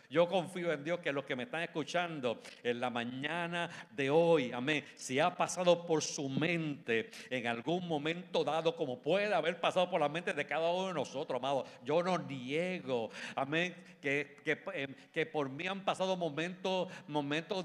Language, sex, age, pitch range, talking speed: Spanish, male, 60-79, 145-180 Hz, 180 wpm